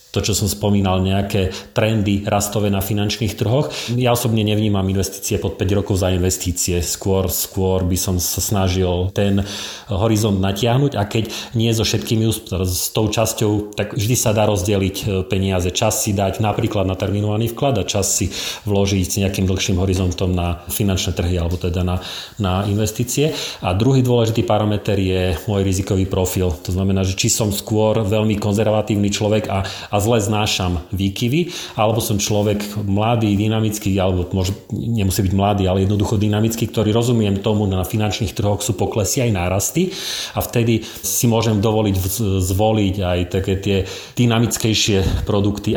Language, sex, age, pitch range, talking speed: Slovak, male, 40-59, 95-110 Hz, 155 wpm